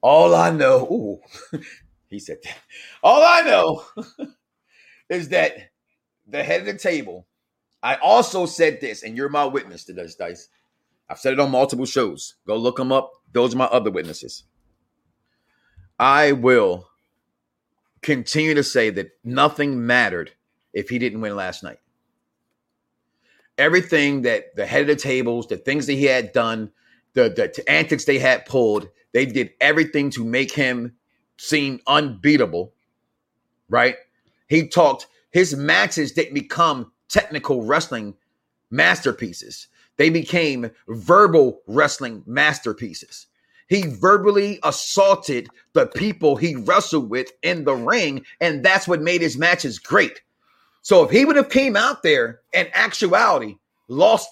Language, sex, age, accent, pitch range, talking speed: English, male, 30-49, American, 125-190 Hz, 140 wpm